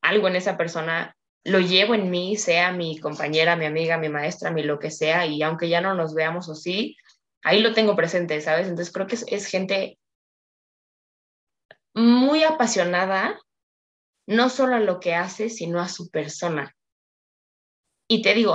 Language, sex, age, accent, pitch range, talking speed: Spanish, female, 20-39, Mexican, 165-210 Hz, 170 wpm